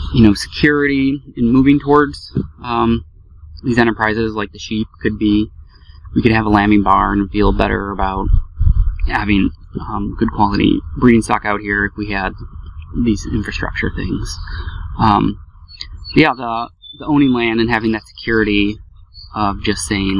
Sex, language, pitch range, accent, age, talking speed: male, English, 90-110 Hz, American, 20-39, 150 wpm